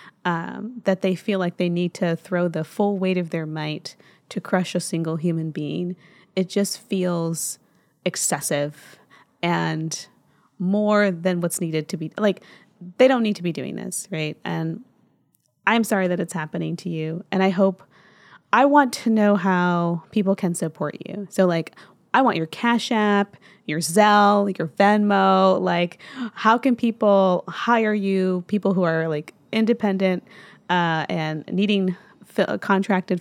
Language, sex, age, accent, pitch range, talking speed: English, female, 20-39, American, 170-205 Hz, 155 wpm